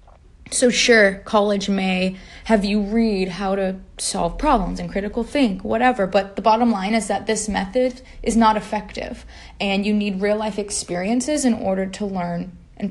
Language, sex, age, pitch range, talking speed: English, female, 20-39, 200-245 Hz, 170 wpm